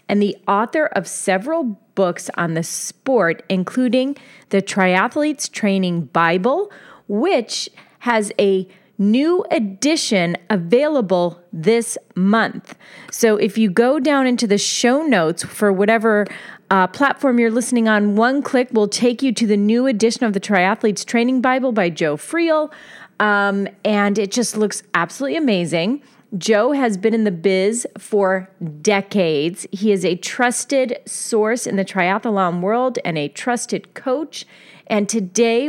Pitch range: 190-245 Hz